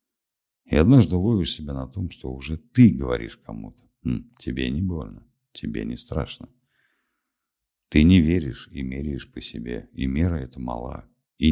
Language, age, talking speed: Russian, 60-79, 150 wpm